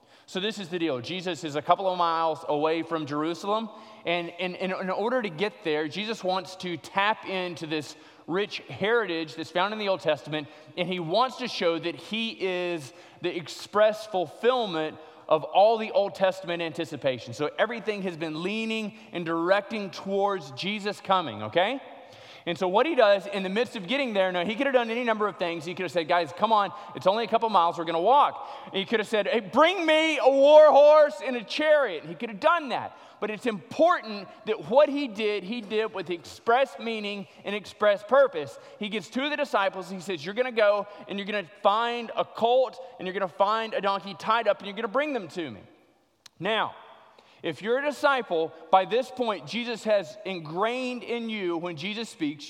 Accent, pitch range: American, 180-240 Hz